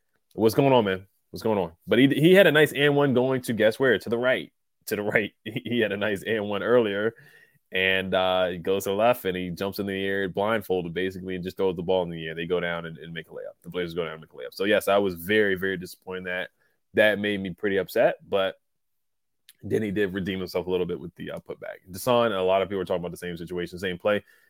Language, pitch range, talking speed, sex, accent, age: English, 95-125 Hz, 265 wpm, male, American, 20-39